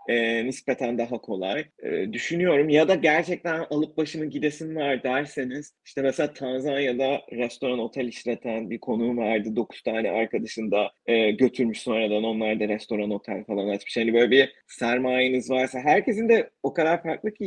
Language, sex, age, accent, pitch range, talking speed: Turkish, male, 30-49, native, 115-150 Hz, 160 wpm